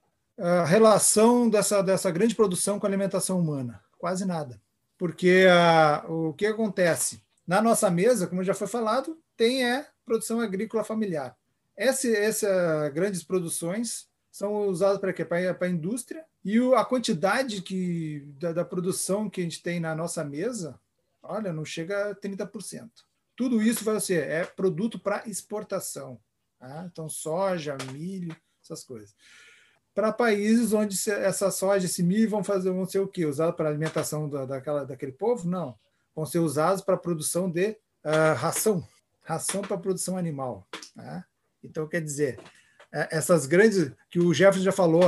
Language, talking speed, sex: Portuguese, 155 wpm, male